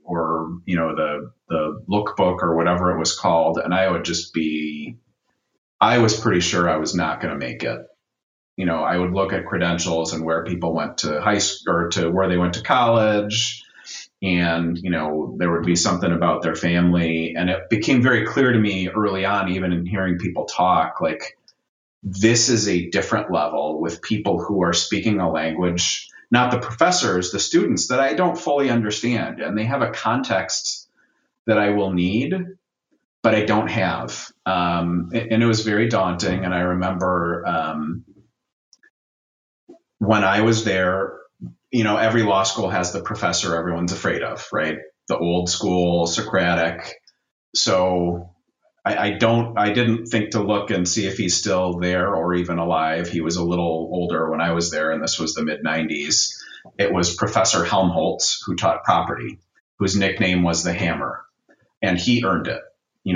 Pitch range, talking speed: 85-105 Hz, 180 wpm